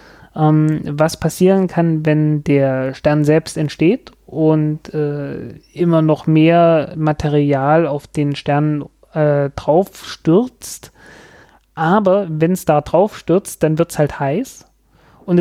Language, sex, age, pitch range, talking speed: German, male, 30-49, 150-175 Hz, 120 wpm